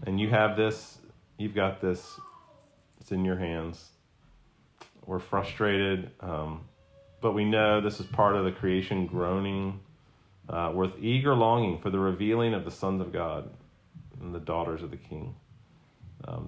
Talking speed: 155 wpm